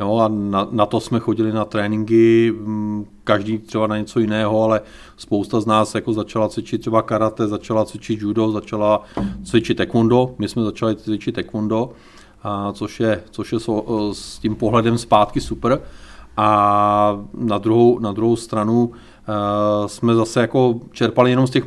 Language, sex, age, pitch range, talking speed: Czech, male, 40-59, 105-115 Hz, 160 wpm